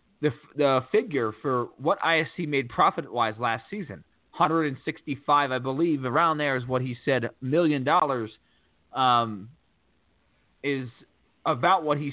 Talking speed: 135 wpm